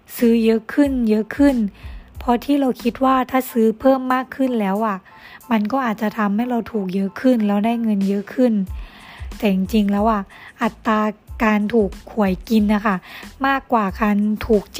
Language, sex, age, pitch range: Thai, female, 20-39, 210-250 Hz